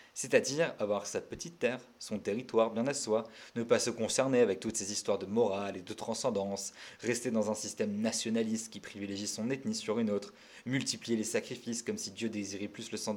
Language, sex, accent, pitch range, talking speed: French, male, French, 105-135 Hz, 205 wpm